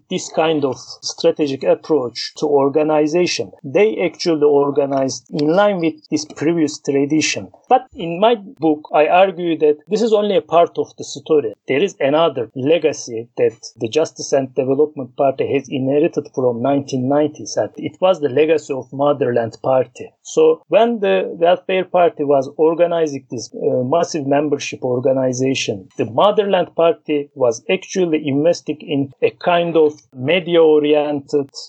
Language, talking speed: English, 140 wpm